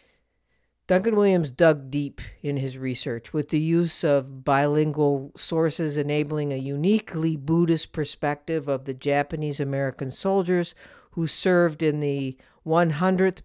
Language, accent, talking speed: English, American, 120 wpm